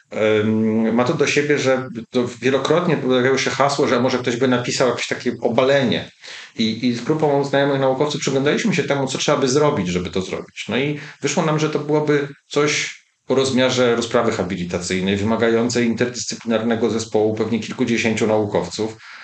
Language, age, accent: Polish, 40-59, native